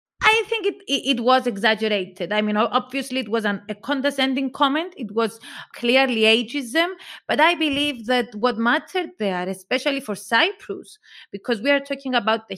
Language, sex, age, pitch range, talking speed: English, female, 30-49, 215-275 Hz, 165 wpm